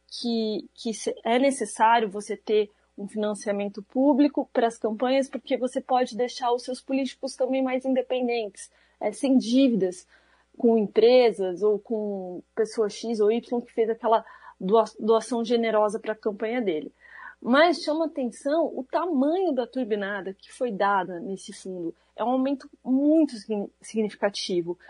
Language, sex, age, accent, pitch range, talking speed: Portuguese, female, 30-49, Brazilian, 210-265 Hz, 140 wpm